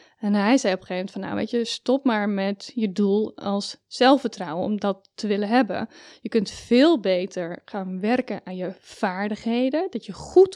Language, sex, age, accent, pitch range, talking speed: Dutch, female, 10-29, Dutch, 195-265 Hz, 200 wpm